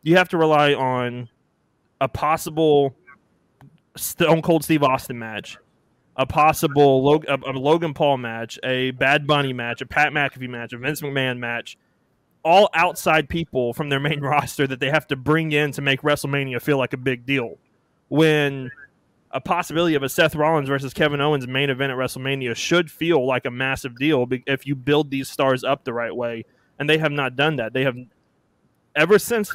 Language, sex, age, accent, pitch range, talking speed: English, male, 20-39, American, 130-155 Hz, 185 wpm